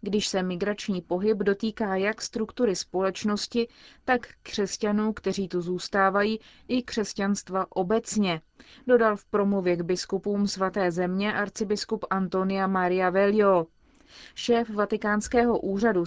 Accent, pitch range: native, 185-215 Hz